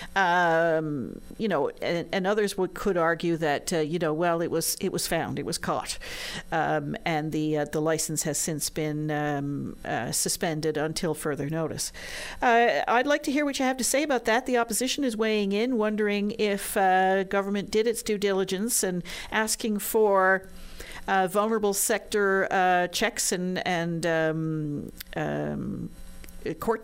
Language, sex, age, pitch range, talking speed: English, female, 50-69, 165-215 Hz, 170 wpm